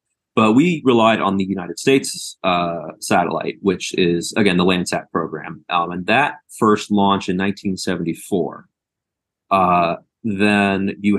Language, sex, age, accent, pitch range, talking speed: English, male, 30-49, American, 90-110 Hz, 135 wpm